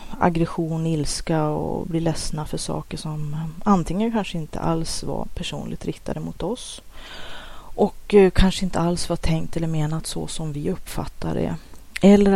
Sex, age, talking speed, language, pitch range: female, 30-49, 150 wpm, Swedish, 160-185 Hz